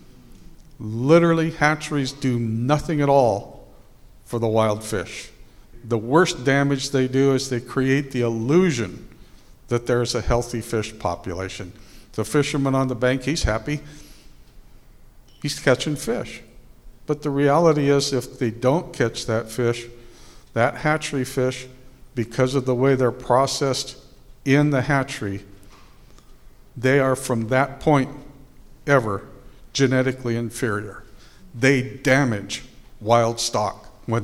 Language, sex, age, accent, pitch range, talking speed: English, male, 60-79, American, 110-135 Hz, 125 wpm